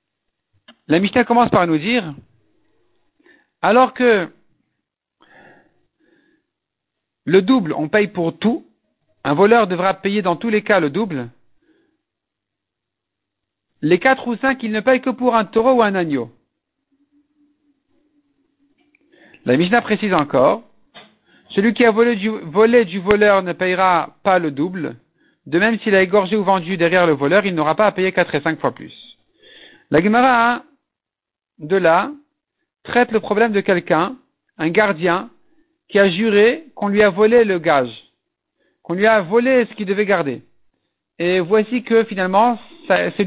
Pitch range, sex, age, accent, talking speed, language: 185-250 Hz, male, 50-69, French, 150 wpm, French